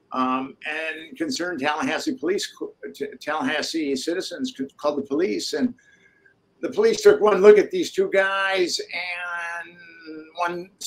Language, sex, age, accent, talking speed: English, male, 60-79, American, 125 wpm